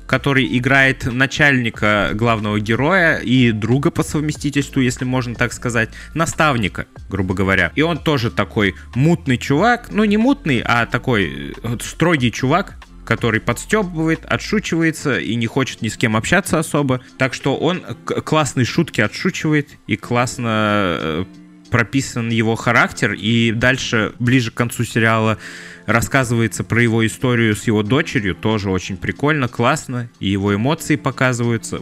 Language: Russian